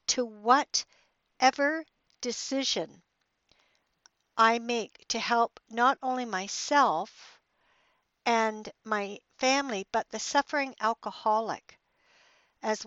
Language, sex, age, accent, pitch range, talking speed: English, female, 60-79, American, 210-260 Hz, 90 wpm